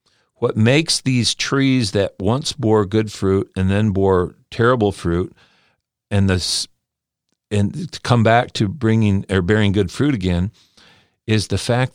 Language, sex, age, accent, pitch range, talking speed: English, male, 50-69, American, 95-115 Hz, 145 wpm